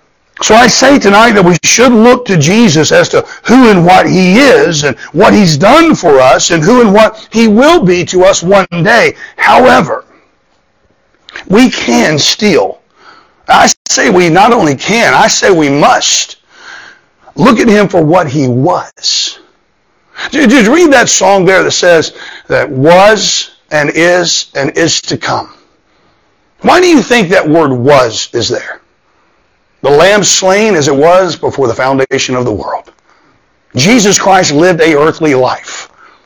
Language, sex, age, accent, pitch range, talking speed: English, male, 60-79, American, 155-240 Hz, 160 wpm